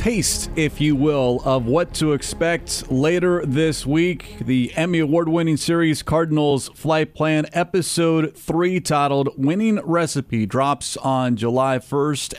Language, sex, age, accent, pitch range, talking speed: English, male, 40-59, American, 130-165 Hz, 135 wpm